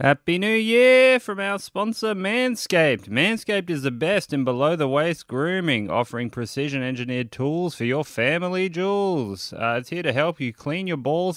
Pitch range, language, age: 115-160 Hz, English, 20-39